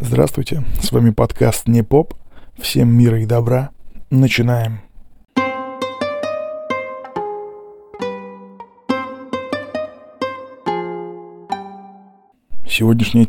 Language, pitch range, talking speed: Russian, 110-135 Hz, 50 wpm